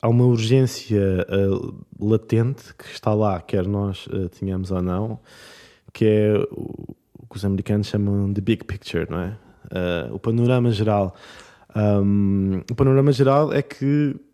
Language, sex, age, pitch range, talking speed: English, male, 20-39, 100-115 Hz, 155 wpm